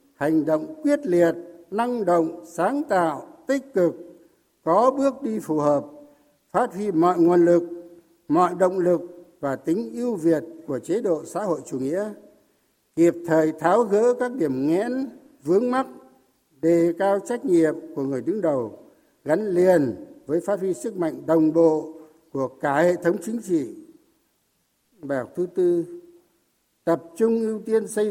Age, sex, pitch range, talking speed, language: 60-79, male, 160-240 Hz, 160 wpm, Vietnamese